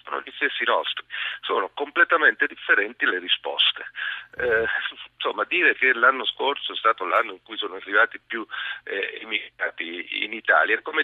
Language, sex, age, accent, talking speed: Italian, male, 40-59, native, 150 wpm